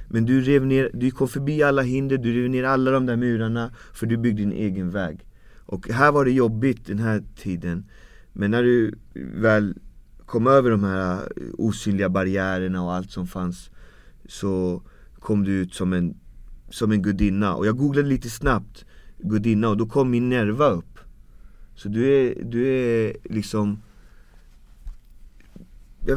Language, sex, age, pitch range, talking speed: English, male, 30-49, 95-125 Hz, 165 wpm